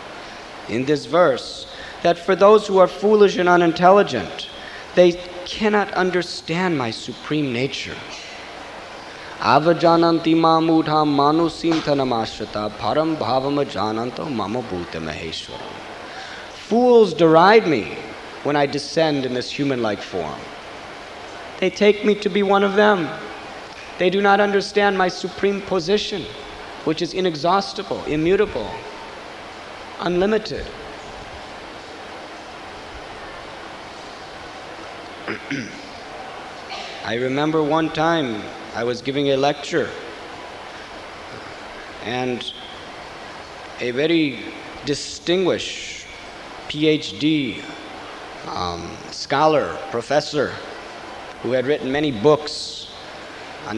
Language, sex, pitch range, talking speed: English, male, 135-180 Hz, 85 wpm